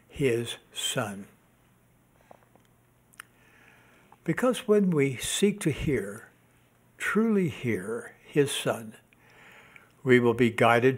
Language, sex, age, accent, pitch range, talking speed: English, male, 60-79, American, 120-190 Hz, 85 wpm